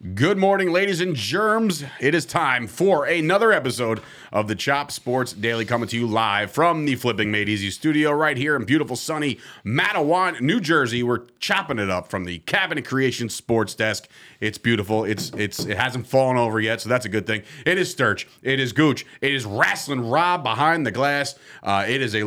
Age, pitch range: 30-49, 115-145 Hz